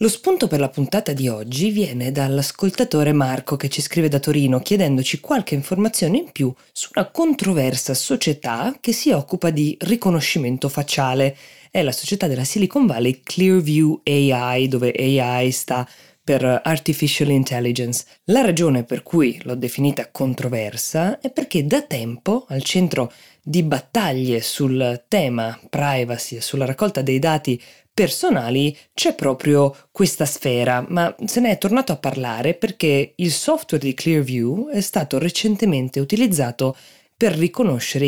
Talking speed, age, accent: 140 wpm, 20-39, native